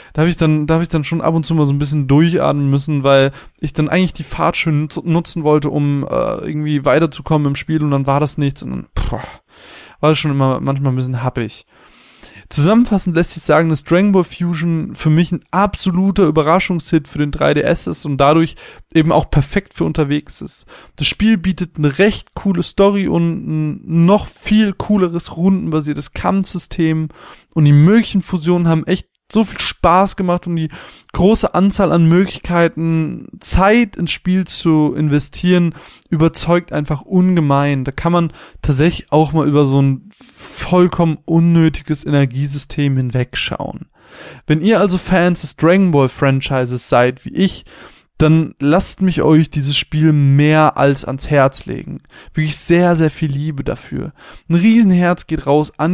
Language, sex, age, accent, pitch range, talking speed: German, male, 20-39, German, 145-175 Hz, 170 wpm